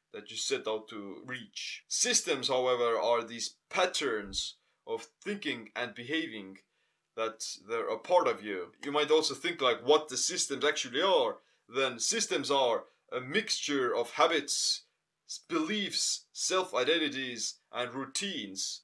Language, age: English, 30-49